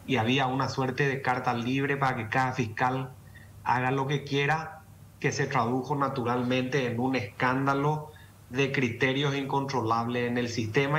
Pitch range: 120-140 Hz